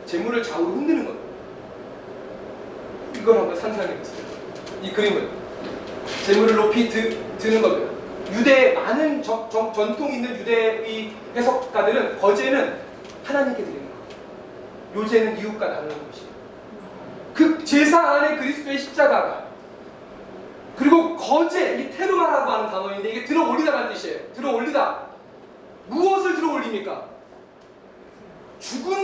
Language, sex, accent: Korean, male, native